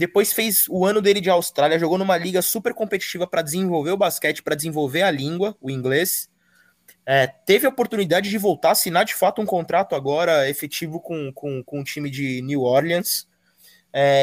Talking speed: 185 wpm